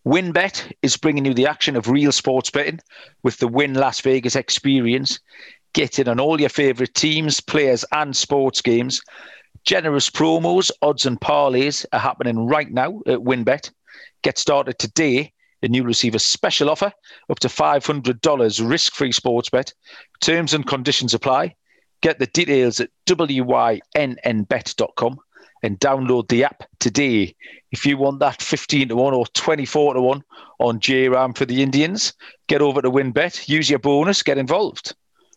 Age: 40-59